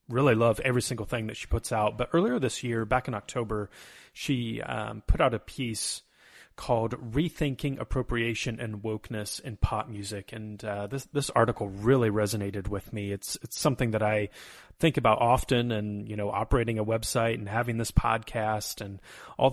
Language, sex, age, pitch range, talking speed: English, male, 30-49, 105-125 Hz, 180 wpm